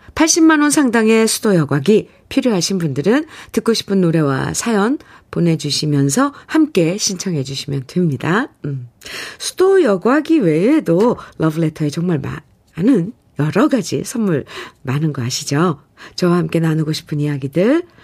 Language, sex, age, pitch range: Korean, female, 50-69, 145-225 Hz